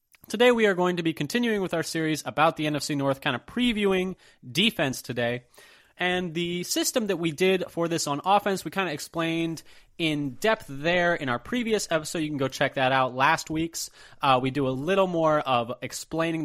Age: 20-39